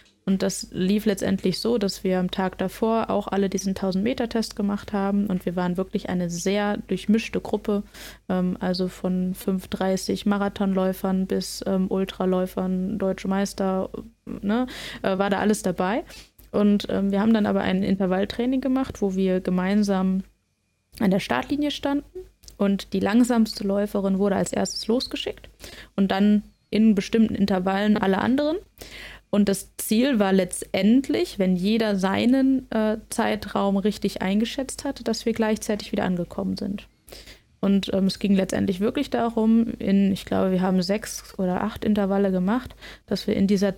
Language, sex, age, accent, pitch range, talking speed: German, female, 20-39, German, 195-225 Hz, 150 wpm